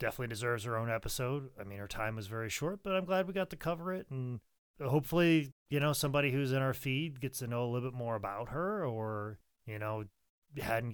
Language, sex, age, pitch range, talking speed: English, male, 30-49, 110-140 Hz, 230 wpm